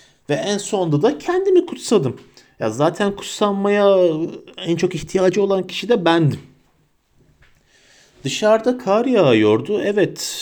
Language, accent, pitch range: Turkish, native, 115-160 Hz